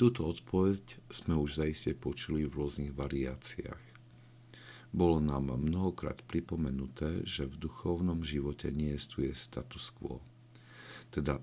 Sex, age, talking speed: male, 50-69, 115 wpm